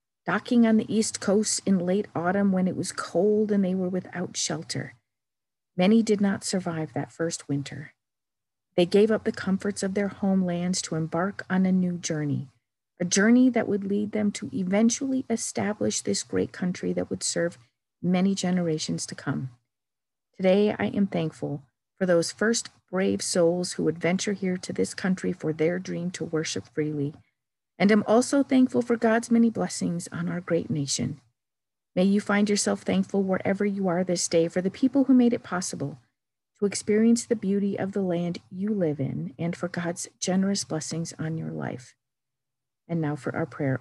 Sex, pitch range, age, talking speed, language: female, 150-205 Hz, 50-69, 180 wpm, English